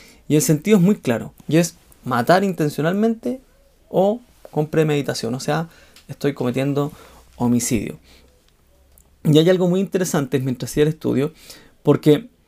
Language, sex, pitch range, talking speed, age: Spanish, male, 130-175 Hz, 135 wpm, 30-49